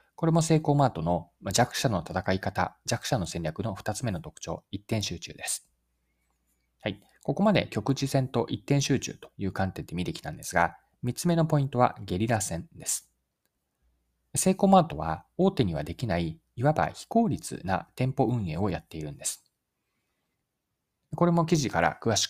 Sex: male